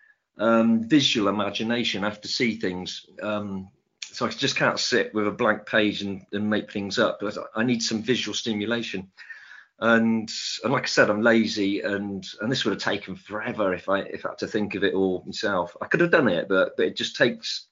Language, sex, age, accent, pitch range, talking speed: English, male, 40-59, British, 100-125 Hz, 215 wpm